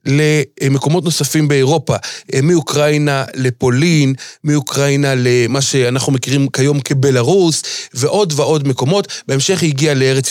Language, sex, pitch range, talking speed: Hebrew, male, 135-165 Hz, 105 wpm